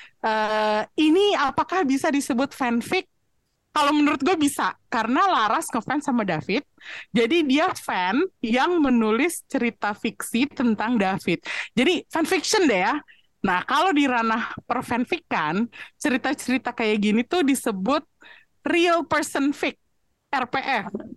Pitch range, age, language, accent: 215-295 Hz, 30-49, Indonesian, native